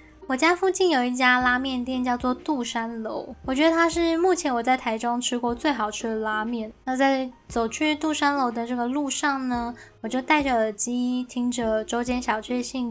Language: Chinese